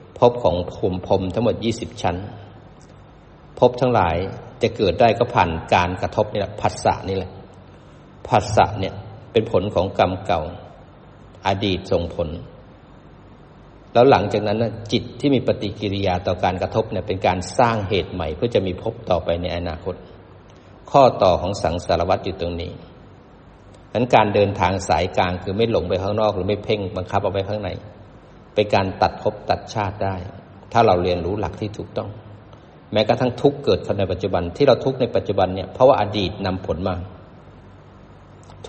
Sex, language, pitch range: male, Thai, 95-110 Hz